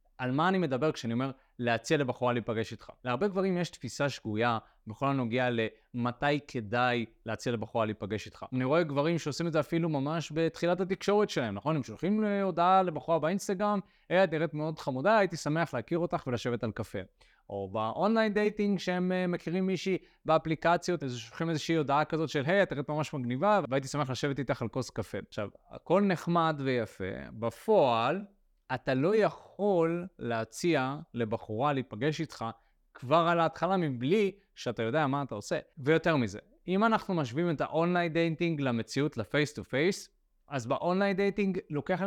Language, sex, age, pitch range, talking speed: Hebrew, male, 20-39, 125-180 Hz, 145 wpm